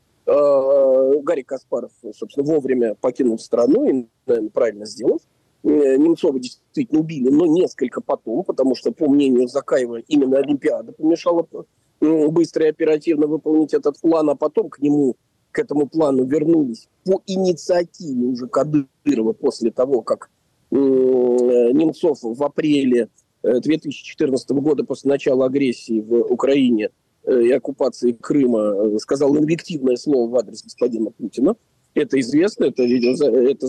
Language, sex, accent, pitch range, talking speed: Russian, male, native, 130-175 Hz, 125 wpm